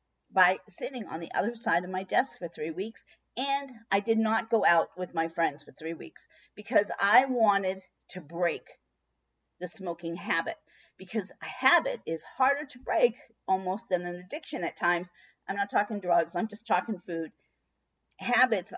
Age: 50-69